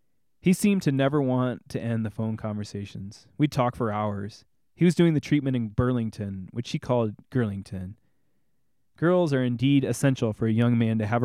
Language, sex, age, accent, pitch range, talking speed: English, male, 20-39, American, 105-130 Hz, 185 wpm